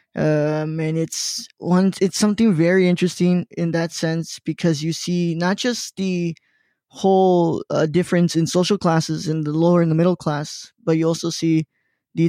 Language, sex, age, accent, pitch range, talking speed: English, male, 20-39, American, 165-185 Hz, 170 wpm